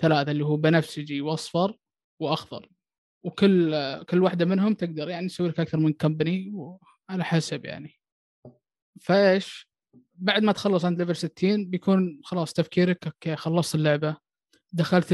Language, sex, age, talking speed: Arabic, male, 20-39, 140 wpm